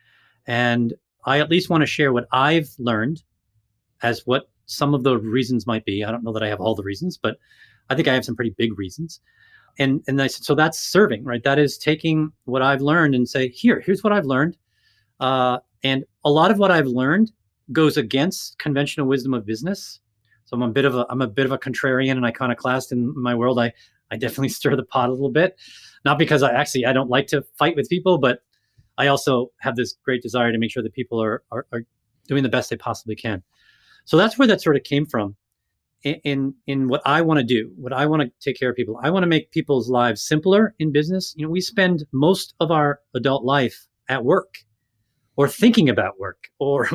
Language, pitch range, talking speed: English, 120-155 Hz, 230 wpm